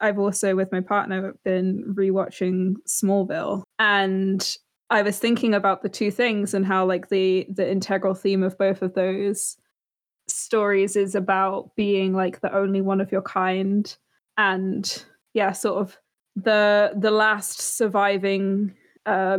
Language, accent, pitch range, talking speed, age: English, British, 195-215 Hz, 145 wpm, 20-39